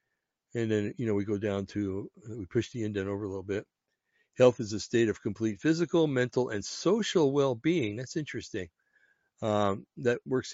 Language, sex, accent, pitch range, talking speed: English, male, American, 105-150 Hz, 180 wpm